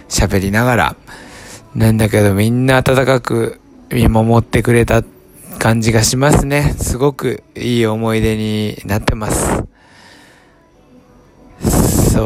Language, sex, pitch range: Japanese, male, 105-145 Hz